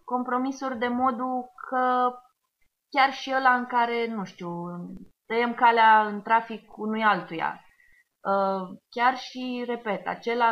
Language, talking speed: Romanian, 120 wpm